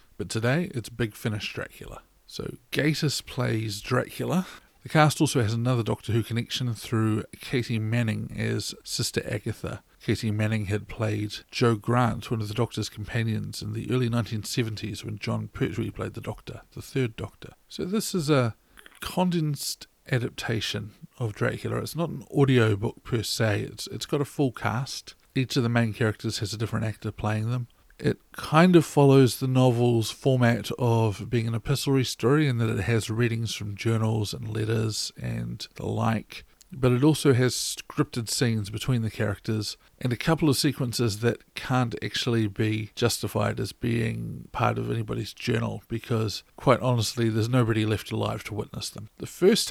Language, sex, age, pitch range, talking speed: English, male, 50-69, 110-125 Hz, 170 wpm